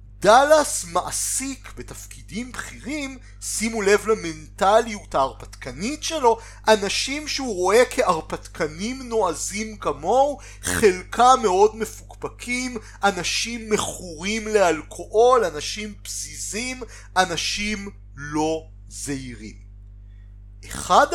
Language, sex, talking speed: Hebrew, male, 75 wpm